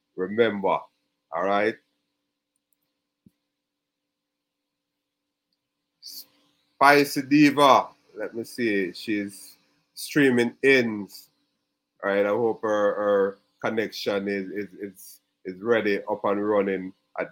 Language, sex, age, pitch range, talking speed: English, male, 30-49, 100-140 Hz, 95 wpm